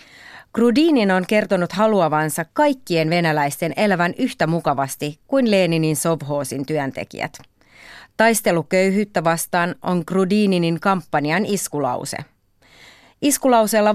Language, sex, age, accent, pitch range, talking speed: Finnish, female, 30-49, native, 155-210 Hz, 85 wpm